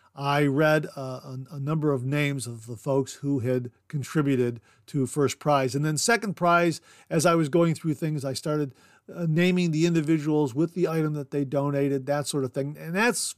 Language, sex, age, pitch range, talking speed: English, male, 50-69, 135-175 Hz, 195 wpm